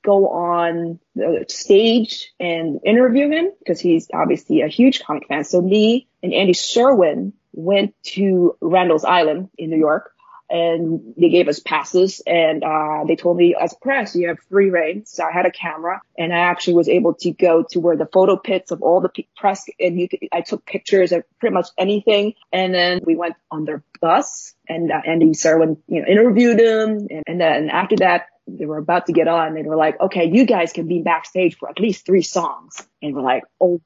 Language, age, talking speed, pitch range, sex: English, 20-39, 210 wpm, 165-205 Hz, female